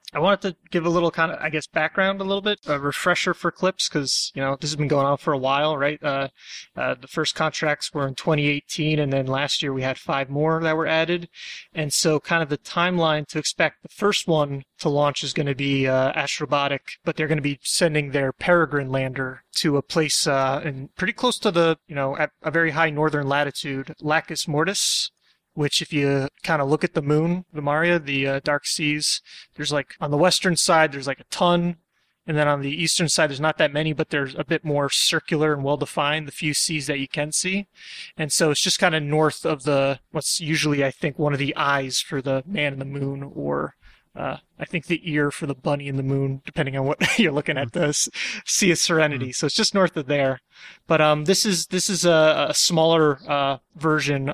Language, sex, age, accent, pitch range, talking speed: English, male, 30-49, American, 140-165 Hz, 230 wpm